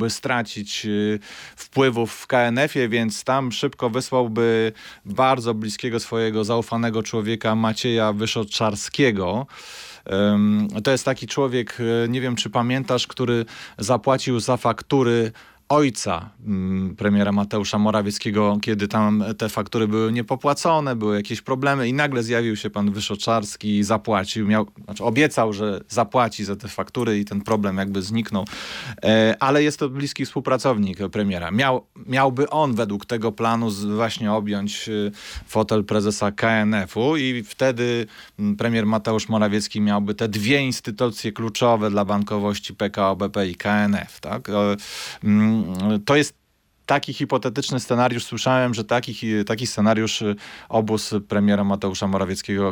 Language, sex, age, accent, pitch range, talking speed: Polish, male, 30-49, native, 105-120 Hz, 120 wpm